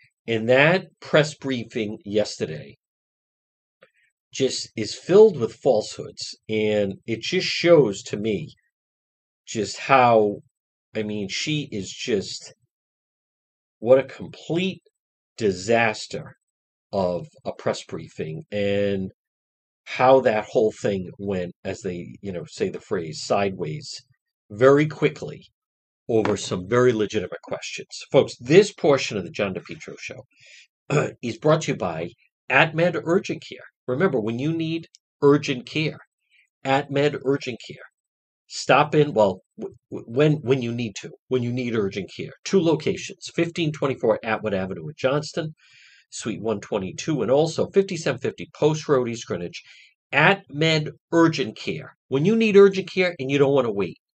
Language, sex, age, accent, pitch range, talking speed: English, male, 50-69, American, 110-155 Hz, 135 wpm